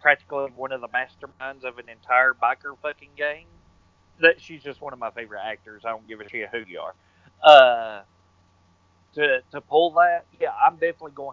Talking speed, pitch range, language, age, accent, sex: 185 wpm, 120-165 Hz, English, 30-49, American, male